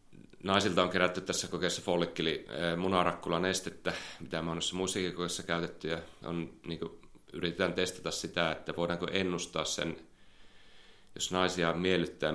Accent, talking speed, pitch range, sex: native, 115 wpm, 80-90 Hz, male